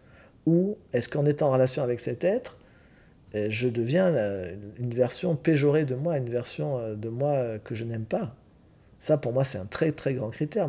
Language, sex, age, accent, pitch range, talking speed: French, male, 40-59, French, 125-155 Hz, 185 wpm